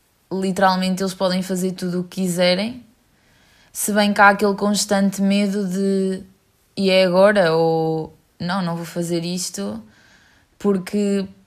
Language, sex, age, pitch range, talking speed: English, female, 20-39, 175-195 Hz, 135 wpm